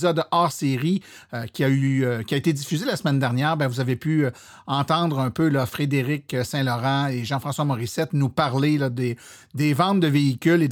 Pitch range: 135-180 Hz